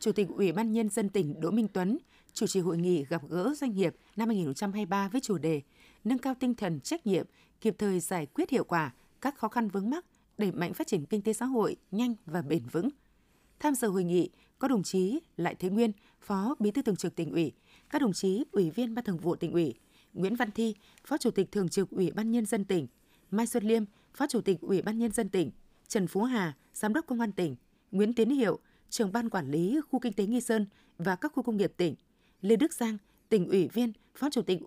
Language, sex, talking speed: Vietnamese, female, 240 wpm